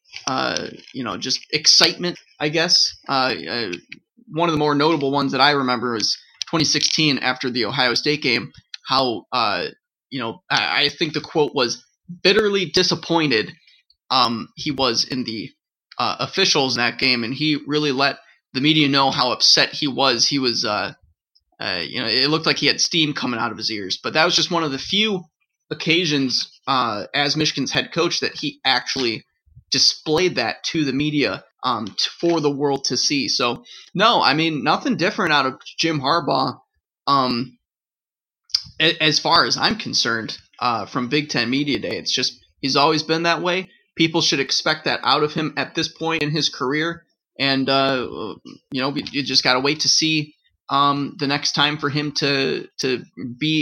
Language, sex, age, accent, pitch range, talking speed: English, male, 20-39, American, 135-165 Hz, 185 wpm